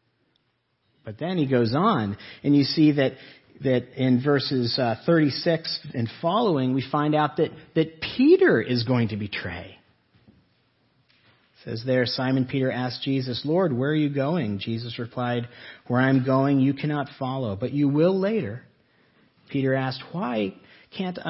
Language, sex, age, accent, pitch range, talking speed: English, male, 40-59, American, 105-145 Hz, 150 wpm